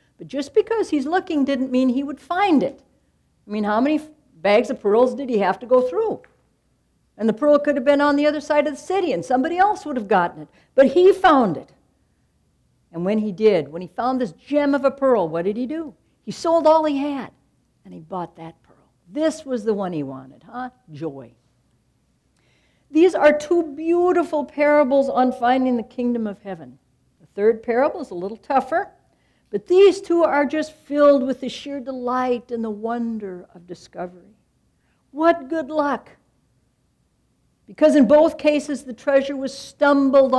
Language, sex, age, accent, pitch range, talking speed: English, female, 60-79, American, 225-300 Hz, 185 wpm